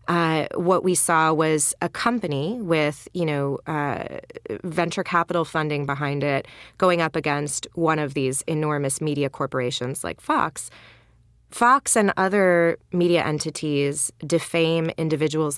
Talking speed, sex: 130 wpm, female